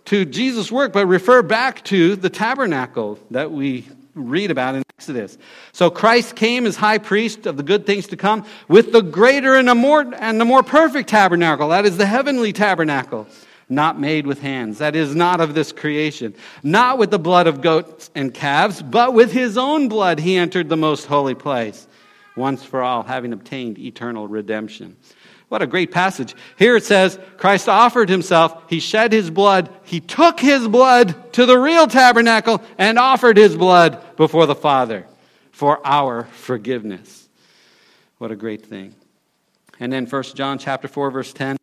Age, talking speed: 50-69, 175 wpm